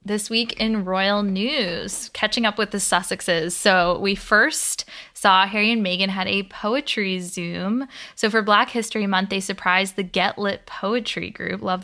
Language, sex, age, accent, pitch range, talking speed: English, female, 20-39, American, 185-220 Hz, 170 wpm